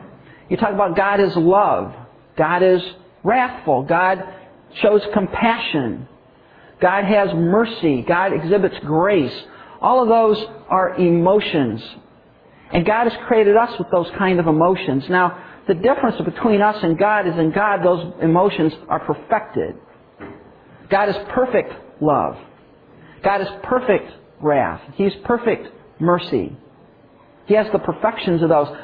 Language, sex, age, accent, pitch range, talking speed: English, male, 50-69, American, 175-215 Hz, 135 wpm